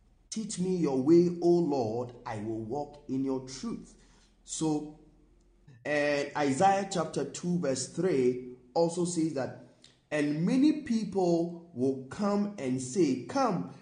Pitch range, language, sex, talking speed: 145-205 Hz, English, male, 130 wpm